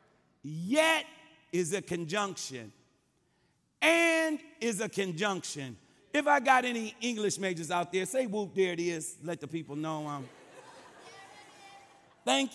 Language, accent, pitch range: English, American, 215-305 Hz